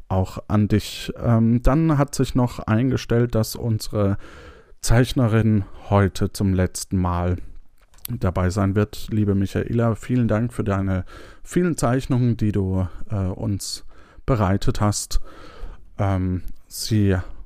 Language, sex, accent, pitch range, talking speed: German, male, German, 95-125 Hz, 110 wpm